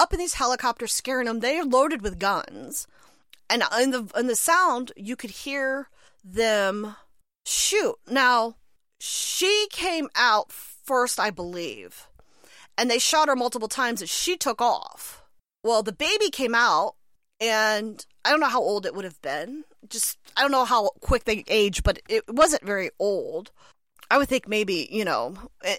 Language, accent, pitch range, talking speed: English, American, 210-280 Hz, 170 wpm